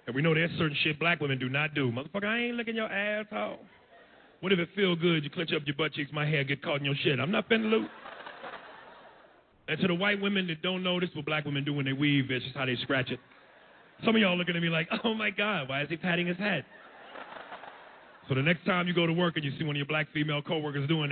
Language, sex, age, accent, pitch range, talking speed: English, male, 40-59, American, 150-215 Hz, 275 wpm